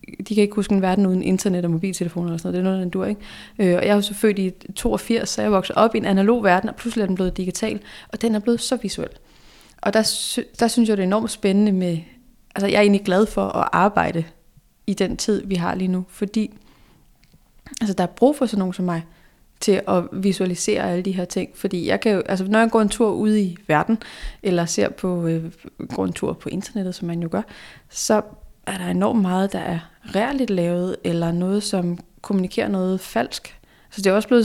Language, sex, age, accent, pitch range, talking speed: Danish, female, 30-49, native, 185-220 Hz, 230 wpm